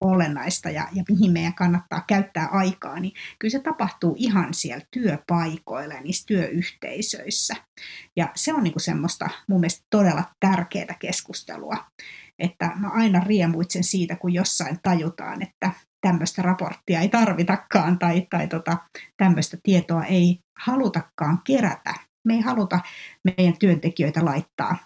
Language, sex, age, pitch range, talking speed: Finnish, female, 60-79, 175-200 Hz, 125 wpm